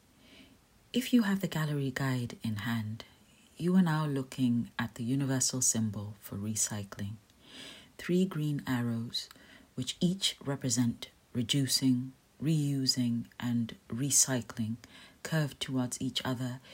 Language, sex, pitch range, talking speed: English, female, 115-140 Hz, 115 wpm